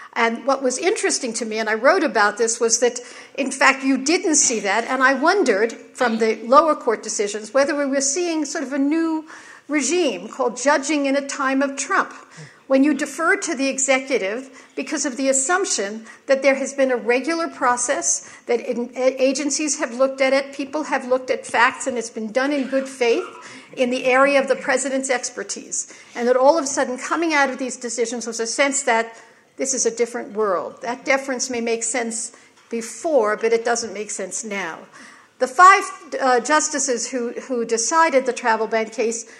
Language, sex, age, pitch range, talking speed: English, female, 60-79, 230-285 Hz, 195 wpm